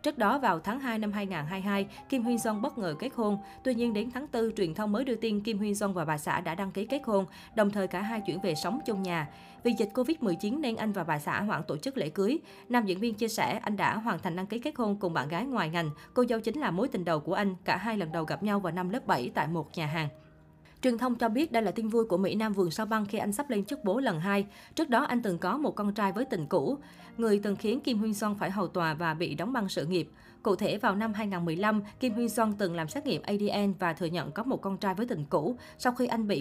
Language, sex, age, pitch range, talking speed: Vietnamese, female, 20-39, 185-230 Hz, 285 wpm